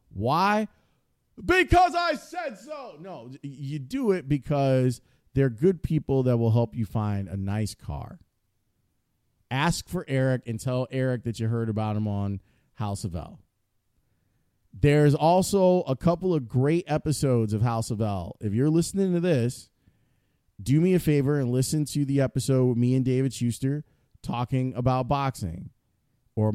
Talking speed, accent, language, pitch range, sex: 160 wpm, American, English, 115-150 Hz, male